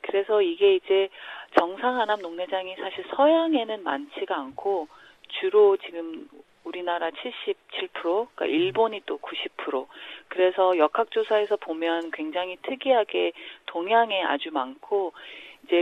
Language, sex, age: Korean, female, 40-59